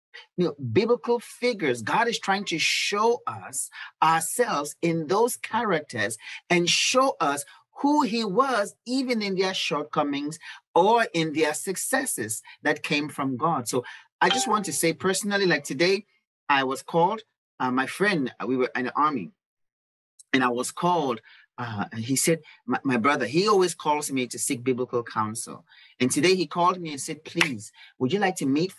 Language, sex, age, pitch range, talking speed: English, male, 30-49, 135-200 Hz, 170 wpm